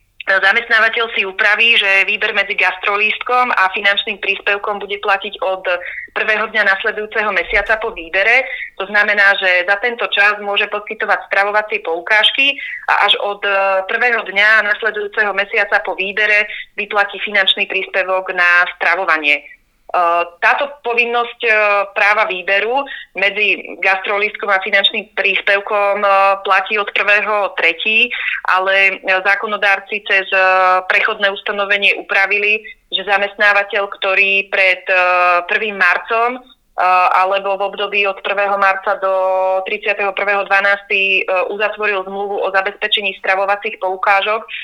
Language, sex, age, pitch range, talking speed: Slovak, female, 20-39, 190-210 Hz, 110 wpm